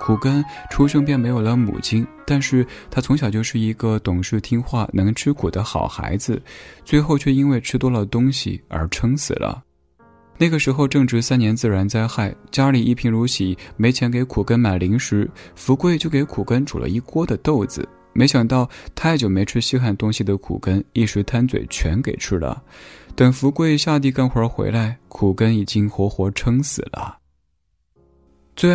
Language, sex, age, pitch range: Chinese, male, 20-39, 100-130 Hz